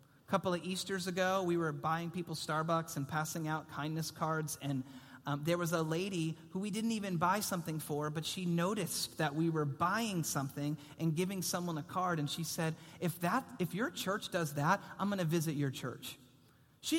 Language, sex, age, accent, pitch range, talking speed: English, male, 30-49, American, 145-190 Hz, 200 wpm